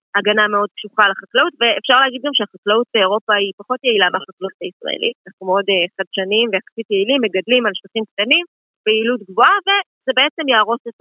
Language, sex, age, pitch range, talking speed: Hebrew, female, 20-39, 205-285 Hz, 170 wpm